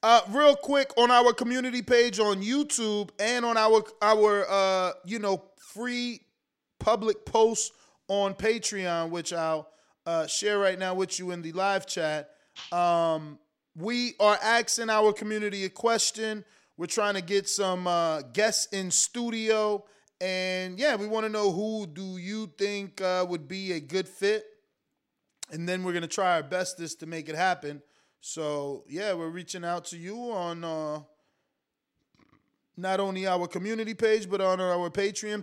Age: 20-39